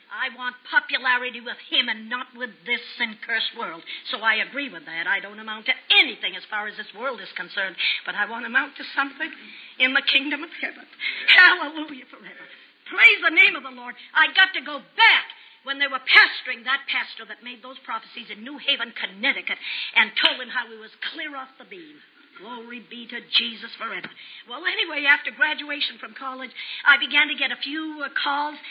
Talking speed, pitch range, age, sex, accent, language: 200 wpm, 245-330 Hz, 50-69, female, American, English